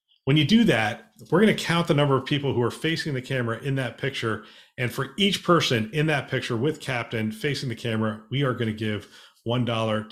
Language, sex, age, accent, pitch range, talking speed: English, male, 40-59, American, 115-145 Hz, 215 wpm